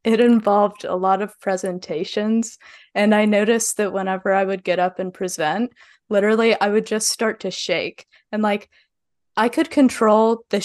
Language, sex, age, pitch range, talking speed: English, female, 20-39, 185-215 Hz, 170 wpm